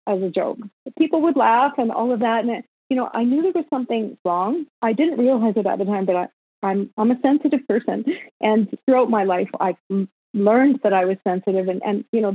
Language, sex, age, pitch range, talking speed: English, female, 40-59, 195-240 Hz, 240 wpm